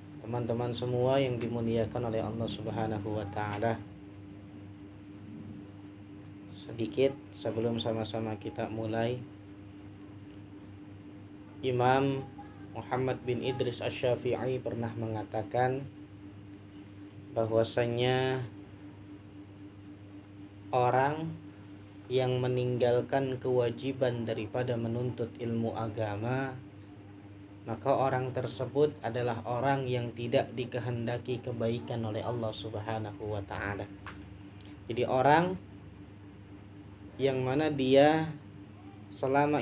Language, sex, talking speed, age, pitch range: Malay, male, 75 wpm, 20-39, 100-135 Hz